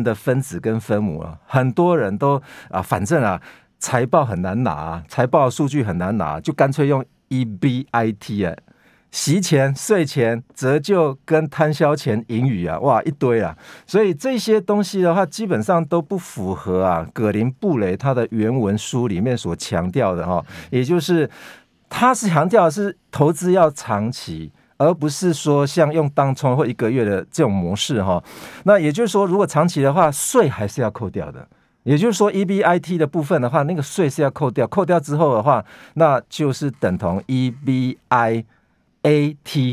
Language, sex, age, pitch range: Chinese, male, 50-69, 110-160 Hz